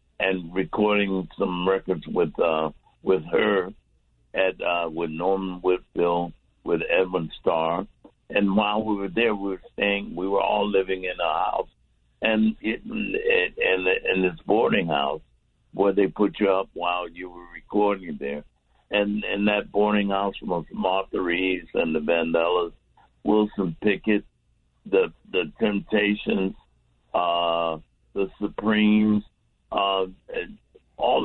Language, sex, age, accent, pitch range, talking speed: English, male, 60-79, American, 85-105 Hz, 130 wpm